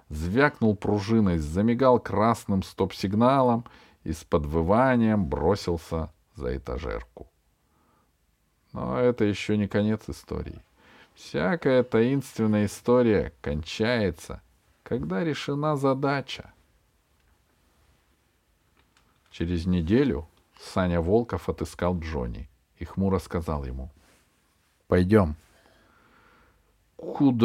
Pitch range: 80-110 Hz